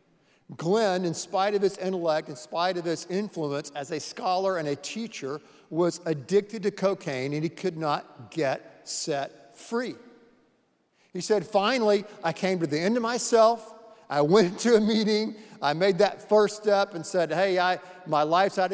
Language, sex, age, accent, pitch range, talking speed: English, male, 50-69, American, 155-195 Hz, 175 wpm